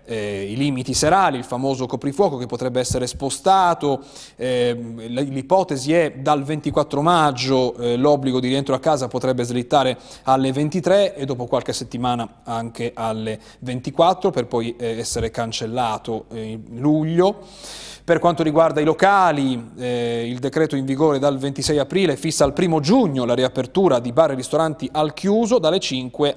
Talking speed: 160 wpm